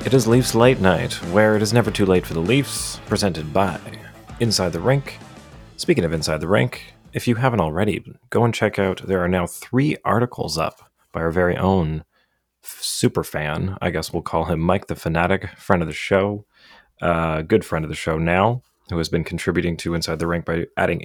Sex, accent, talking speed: male, American, 210 wpm